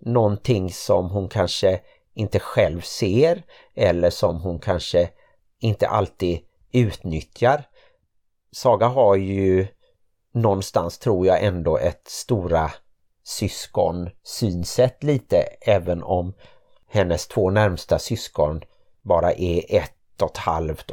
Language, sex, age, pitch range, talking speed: Swedish, male, 50-69, 85-105 Hz, 105 wpm